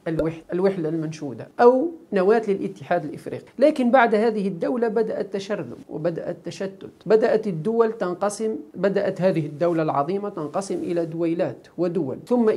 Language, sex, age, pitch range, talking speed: Arabic, male, 50-69, 165-215 Hz, 125 wpm